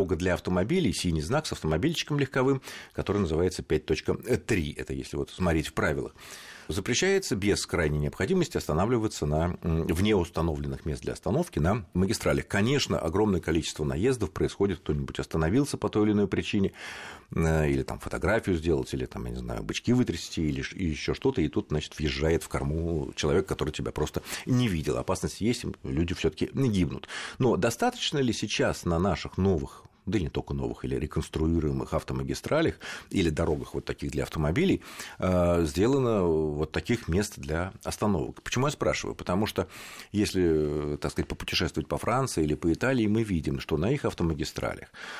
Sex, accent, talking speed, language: male, native, 160 wpm, Russian